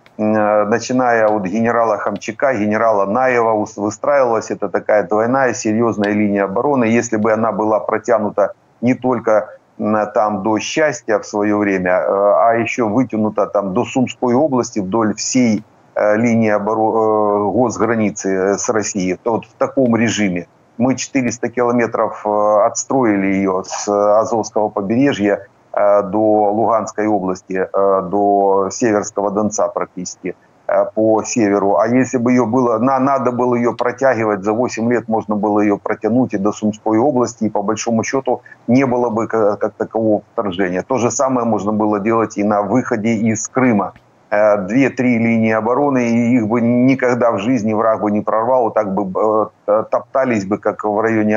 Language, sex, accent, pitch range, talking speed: Ukrainian, male, native, 105-120 Hz, 145 wpm